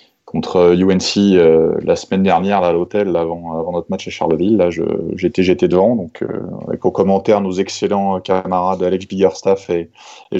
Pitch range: 90-115 Hz